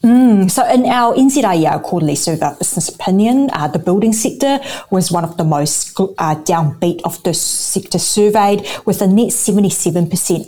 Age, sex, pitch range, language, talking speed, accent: 30-49, female, 170-215 Hz, English, 160 wpm, Australian